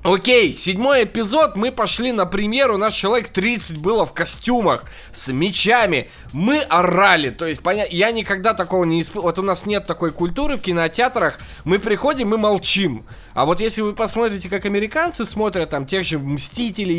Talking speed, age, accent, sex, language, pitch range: 175 wpm, 20-39, native, male, Russian, 155-205 Hz